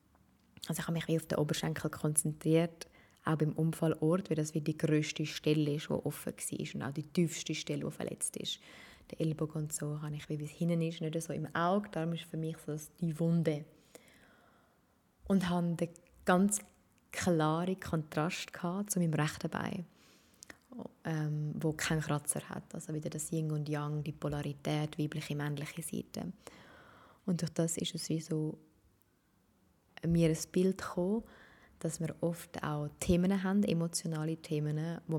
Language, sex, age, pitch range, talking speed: German, female, 20-39, 150-175 Hz, 175 wpm